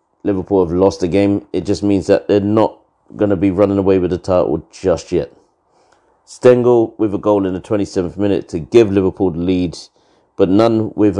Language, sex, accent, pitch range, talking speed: English, male, British, 90-105 Hz, 200 wpm